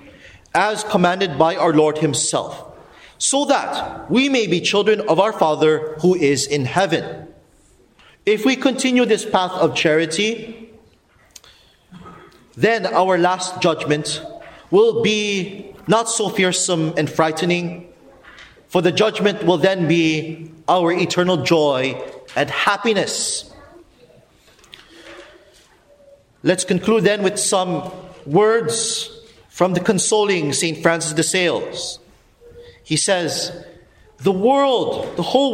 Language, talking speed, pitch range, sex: English, 115 wpm, 160-220 Hz, male